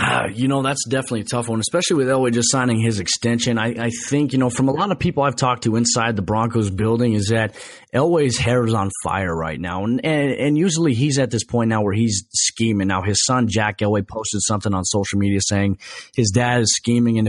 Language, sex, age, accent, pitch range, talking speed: English, male, 20-39, American, 105-125 Hz, 235 wpm